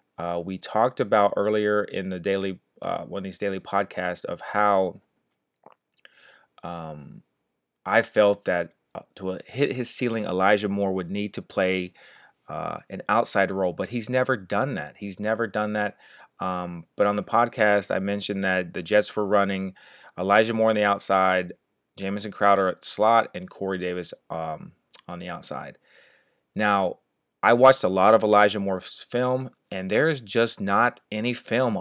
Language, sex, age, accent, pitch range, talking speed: English, male, 30-49, American, 95-110 Hz, 165 wpm